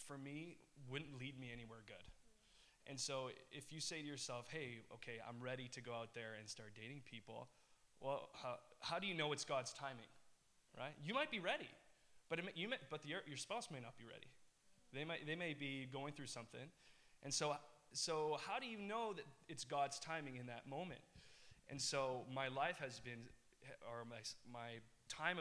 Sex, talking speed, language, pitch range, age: male, 195 wpm, English, 120-145 Hz, 20-39